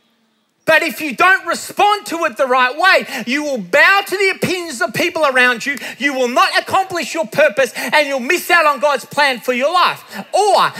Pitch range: 250-340 Hz